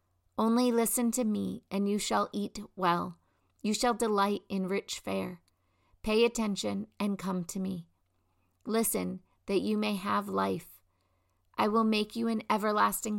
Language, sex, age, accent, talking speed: English, female, 40-59, American, 150 wpm